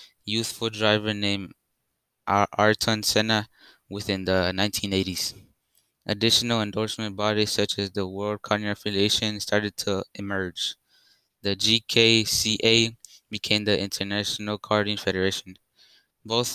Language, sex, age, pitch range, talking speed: English, male, 20-39, 100-110 Hz, 105 wpm